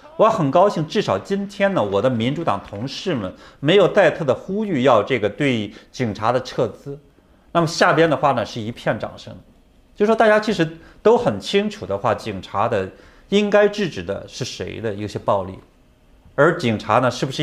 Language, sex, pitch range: Chinese, male, 115-180 Hz